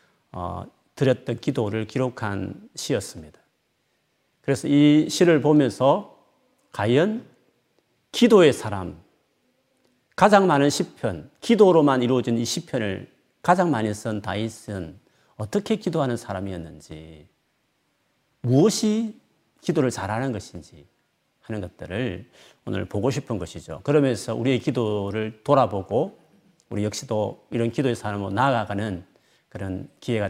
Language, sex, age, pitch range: Korean, male, 40-59, 100-150 Hz